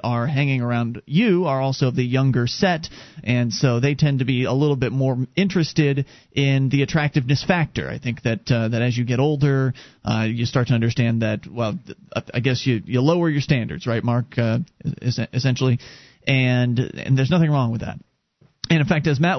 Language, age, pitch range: English, 30-49, 130-185 Hz